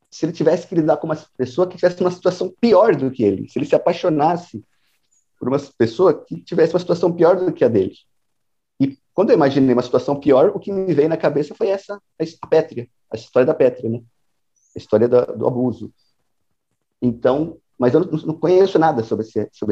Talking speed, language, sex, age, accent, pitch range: 205 wpm, Portuguese, male, 30-49, Brazilian, 120-170 Hz